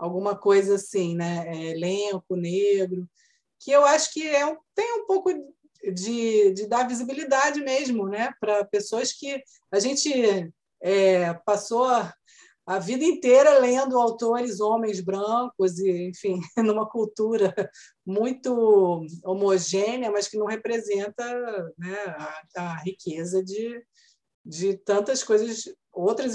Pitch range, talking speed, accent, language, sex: 195-245 Hz, 125 wpm, Brazilian, Portuguese, female